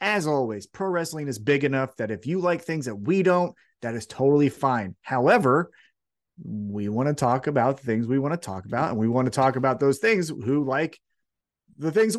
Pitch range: 130-175 Hz